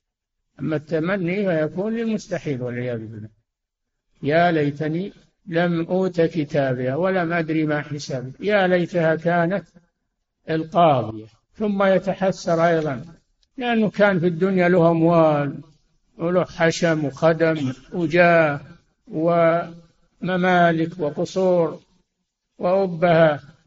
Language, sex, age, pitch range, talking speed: Arabic, male, 60-79, 150-175 Hz, 90 wpm